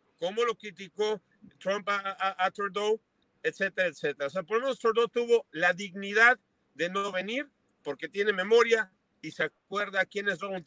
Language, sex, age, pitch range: Spanish, male, 50-69, 180-230 Hz